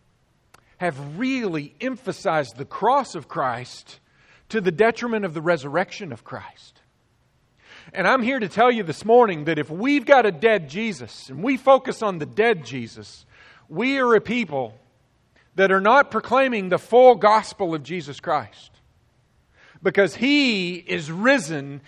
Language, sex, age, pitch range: English, male, 40-59, 145-220 Hz